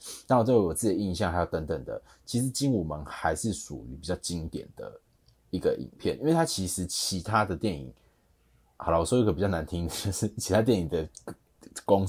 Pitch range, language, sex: 85-115 Hz, Chinese, male